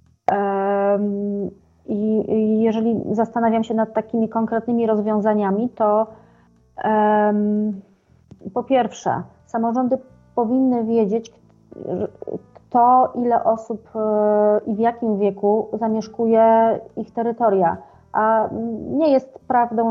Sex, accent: female, native